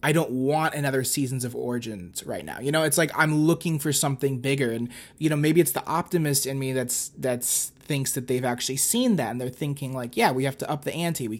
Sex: male